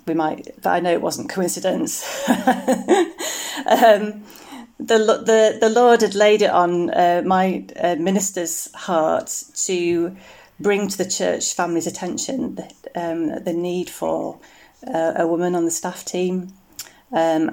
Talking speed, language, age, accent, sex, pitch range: 135 wpm, English, 30-49, British, female, 175-210 Hz